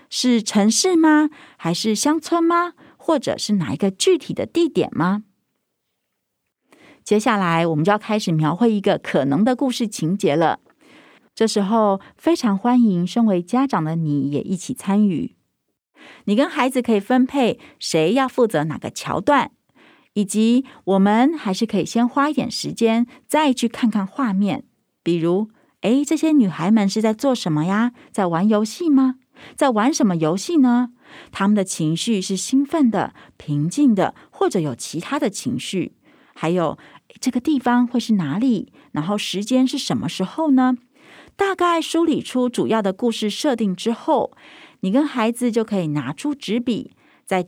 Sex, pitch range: female, 195-275 Hz